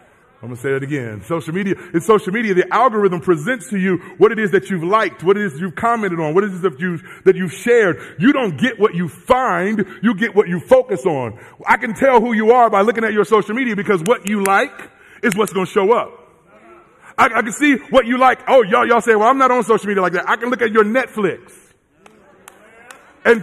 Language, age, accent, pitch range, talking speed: English, 30-49, American, 205-260 Hz, 240 wpm